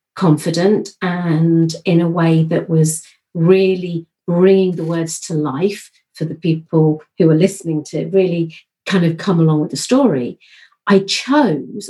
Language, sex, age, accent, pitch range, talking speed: English, female, 50-69, British, 160-190 Hz, 155 wpm